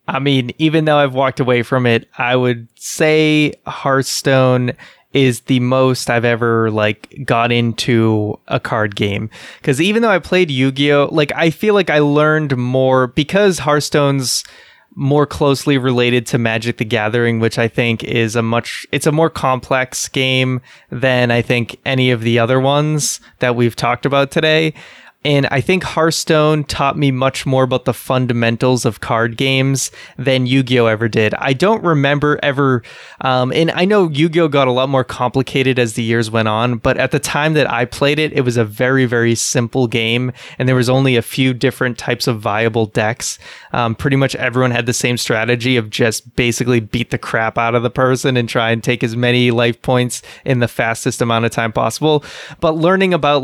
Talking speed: 190 wpm